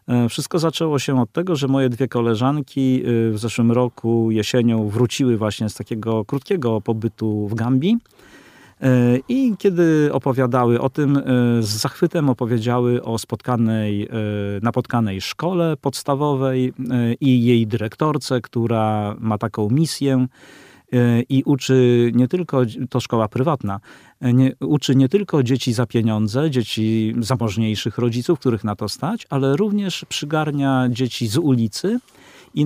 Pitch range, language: 115-135 Hz, Polish